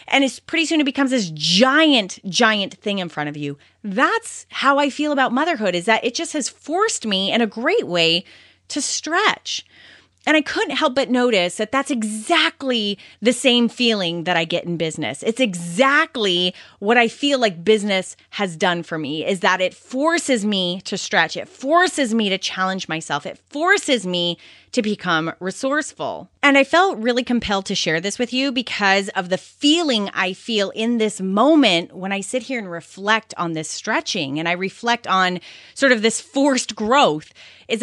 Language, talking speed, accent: English, 185 wpm, American